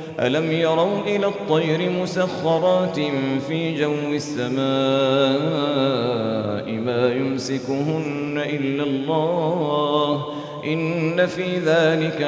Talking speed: 75 wpm